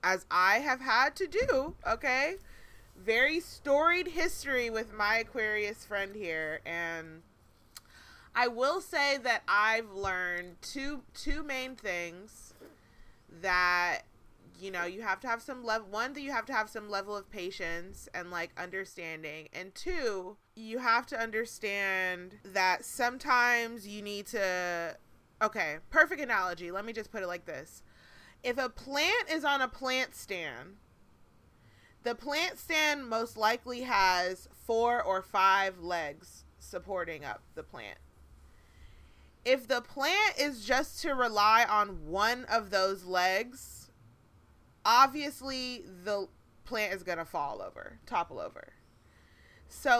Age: 20-39